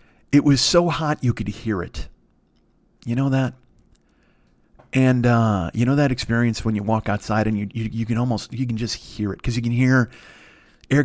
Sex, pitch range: male, 110-130 Hz